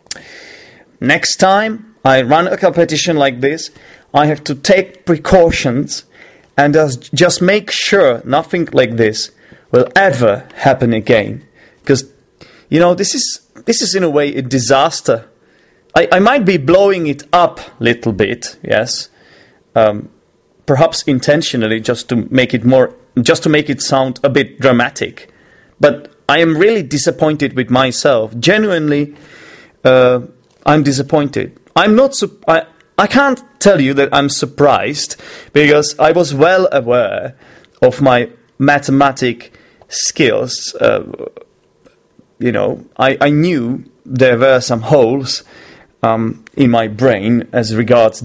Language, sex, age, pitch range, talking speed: English, male, 30-49, 130-180 Hz, 135 wpm